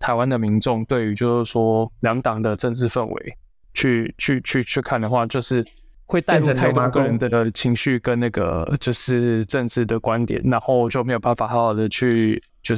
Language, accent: Chinese, native